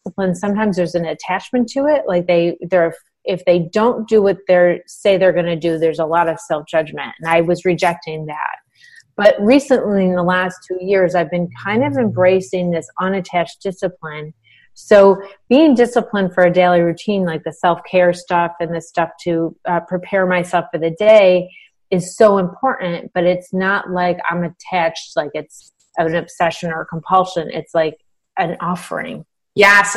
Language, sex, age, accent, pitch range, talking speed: English, female, 30-49, American, 170-205 Hz, 175 wpm